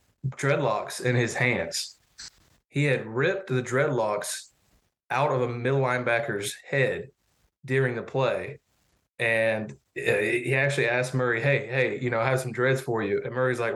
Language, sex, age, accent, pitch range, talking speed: English, male, 20-39, American, 120-135 Hz, 155 wpm